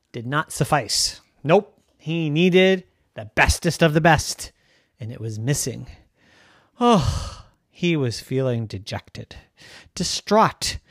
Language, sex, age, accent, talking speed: English, male, 30-49, American, 115 wpm